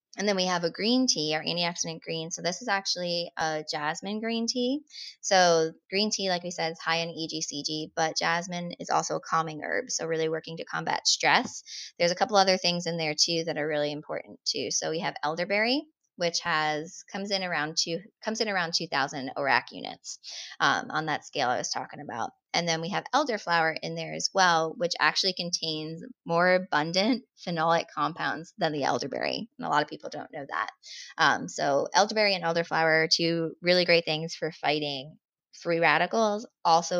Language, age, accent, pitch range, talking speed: English, 20-39, American, 160-185 Hz, 190 wpm